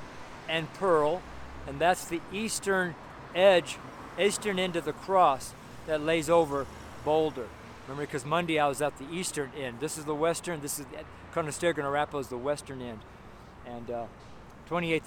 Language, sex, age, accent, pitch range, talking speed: English, male, 50-69, American, 135-165 Hz, 160 wpm